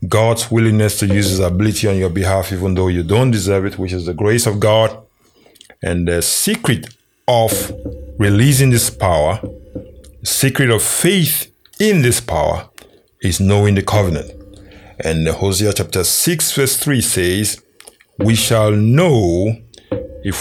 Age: 50-69